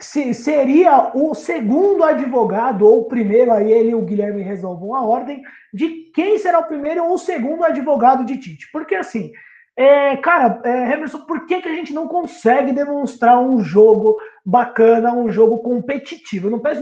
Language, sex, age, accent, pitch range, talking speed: Portuguese, male, 20-39, Brazilian, 225-290 Hz, 165 wpm